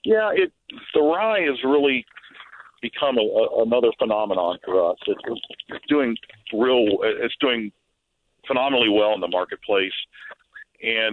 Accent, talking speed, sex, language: American, 135 wpm, male, English